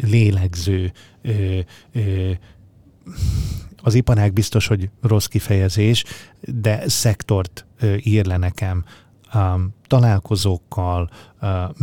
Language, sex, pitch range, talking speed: Hungarian, male, 95-115 Hz, 65 wpm